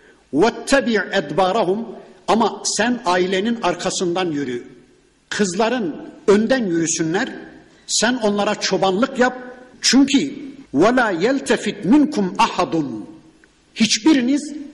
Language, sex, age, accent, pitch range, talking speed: Turkish, male, 60-79, native, 195-250 Hz, 75 wpm